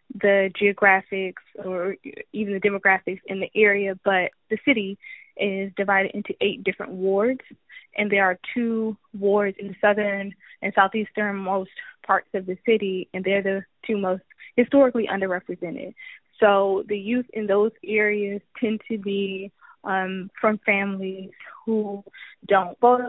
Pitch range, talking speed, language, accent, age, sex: 195-220 Hz, 145 wpm, English, American, 20-39, female